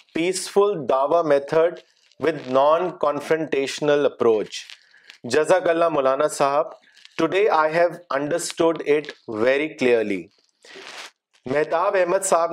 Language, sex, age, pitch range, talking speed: Urdu, male, 40-59, 150-185 Hz, 90 wpm